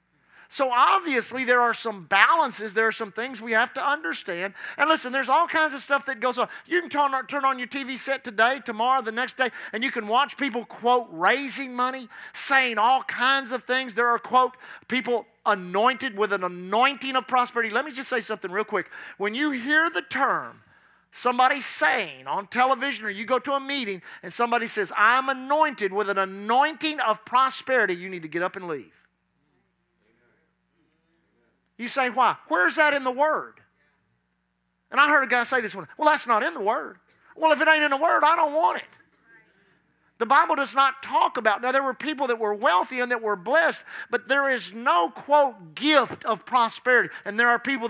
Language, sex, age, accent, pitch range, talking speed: English, male, 40-59, American, 215-275 Hz, 200 wpm